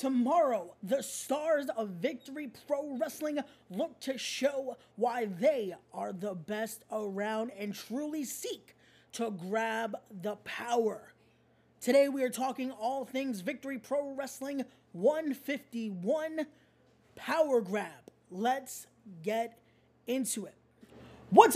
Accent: American